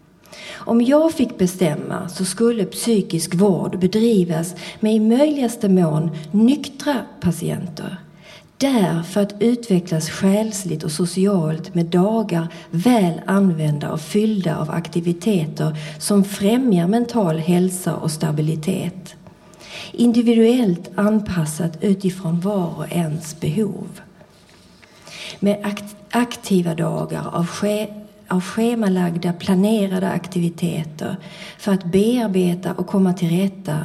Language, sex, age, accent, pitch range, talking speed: Swedish, female, 40-59, native, 170-210 Hz, 105 wpm